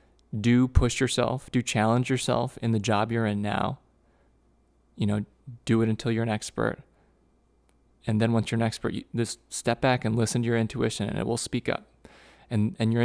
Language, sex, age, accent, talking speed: English, male, 20-39, American, 200 wpm